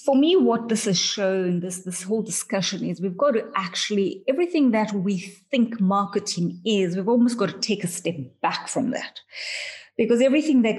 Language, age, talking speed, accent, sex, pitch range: English, 30-49, 190 wpm, Indian, female, 185-235 Hz